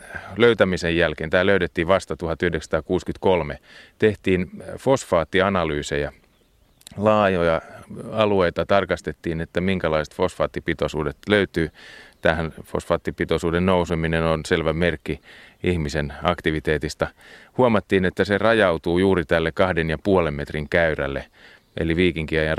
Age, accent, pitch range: 30-49, native, 80-95 Hz